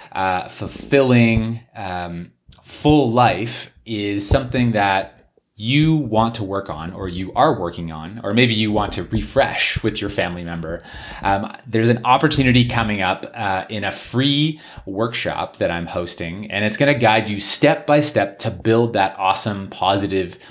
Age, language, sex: 30-49, English, male